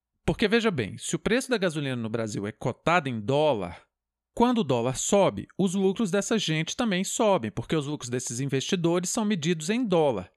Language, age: Portuguese, 40-59